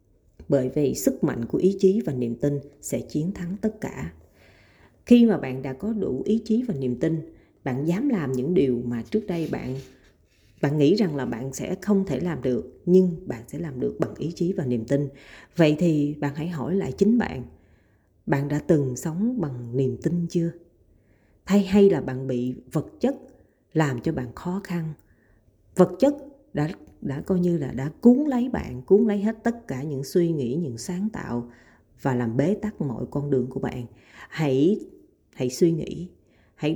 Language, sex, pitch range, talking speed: Vietnamese, female, 130-190 Hz, 195 wpm